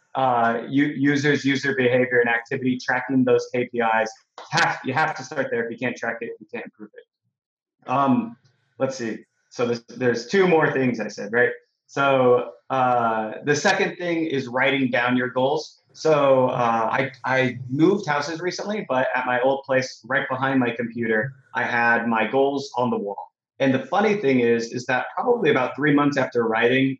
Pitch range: 120-150 Hz